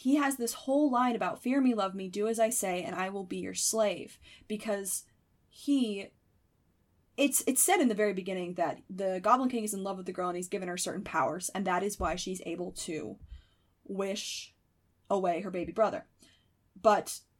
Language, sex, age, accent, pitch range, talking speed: English, female, 20-39, American, 185-240 Hz, 200 wpm